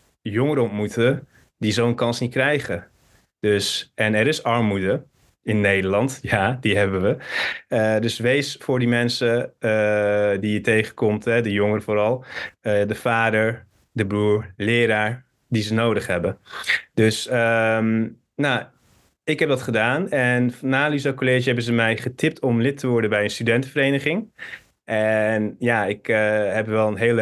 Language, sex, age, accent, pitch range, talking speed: Dutch, male, 20-39, Dutch, 110-130 Hz, 160 wpm